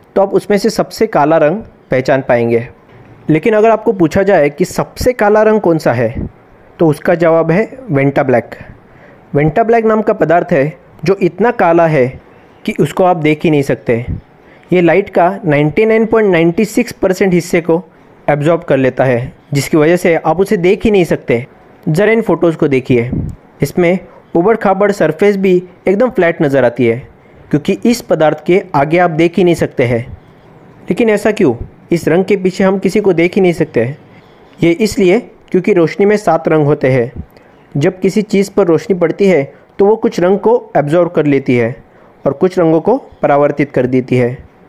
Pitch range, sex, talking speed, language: 145-195 Hz, male, 185 wpm, Hindi